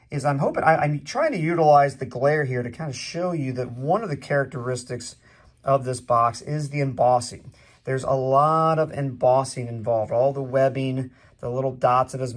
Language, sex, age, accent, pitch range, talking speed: English, male, 40-59, American, 125-145 Hz, 195 wpm